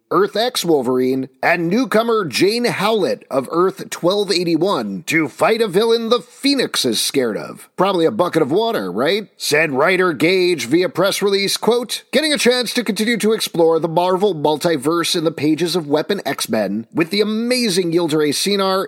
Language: English